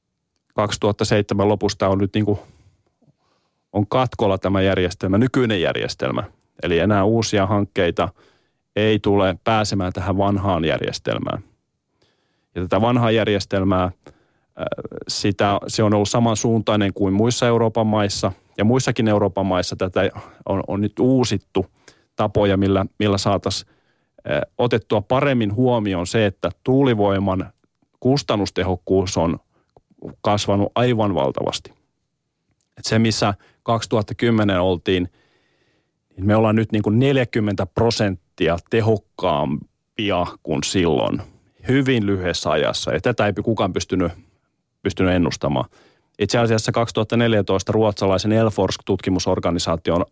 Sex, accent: male, native